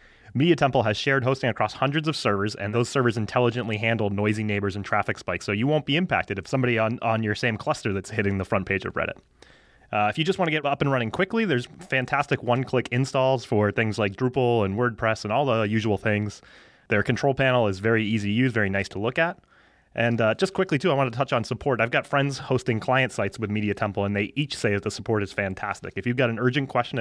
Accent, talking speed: American, 250 wpm